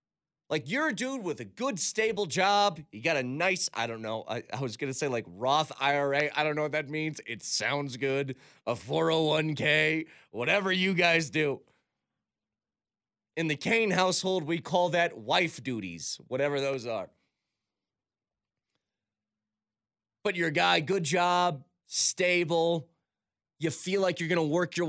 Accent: American